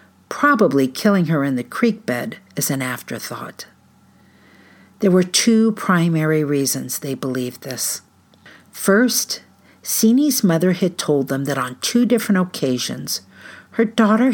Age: 50-69